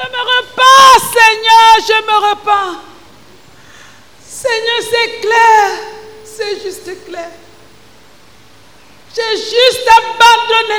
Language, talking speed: English, 90 wpm